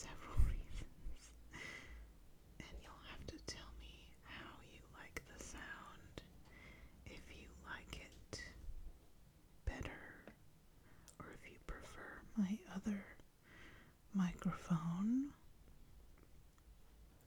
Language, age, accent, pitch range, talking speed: English, 30-49, American, 150-200 Hz, 85 wpm